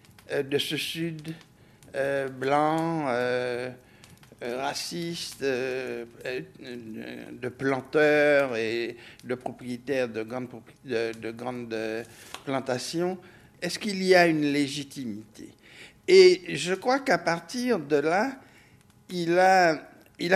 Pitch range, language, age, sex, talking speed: 130-195 Hz, French, 60-79, male, 85 wpm